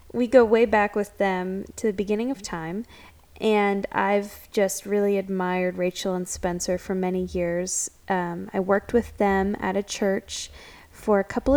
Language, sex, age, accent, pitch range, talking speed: English, female, 10-29, American, 185-225 Hz, 170 wpm